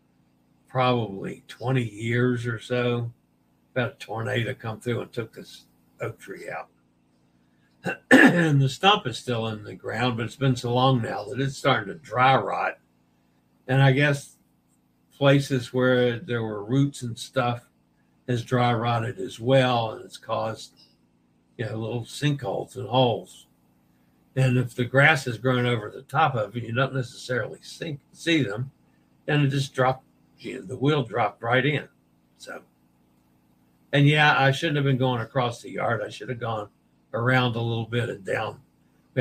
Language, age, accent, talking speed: English, 60-79, American, 165 wpm